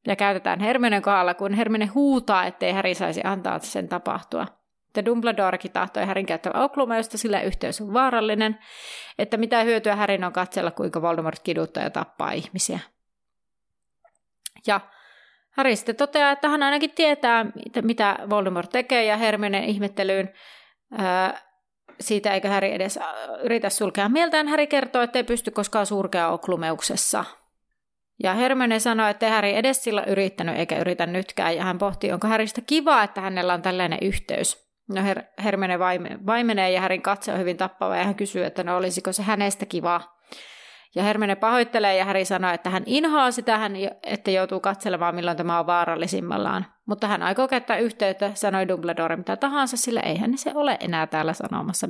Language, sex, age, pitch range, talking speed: Finnish, female, 30-49, 185-230 Hz, 160 wpm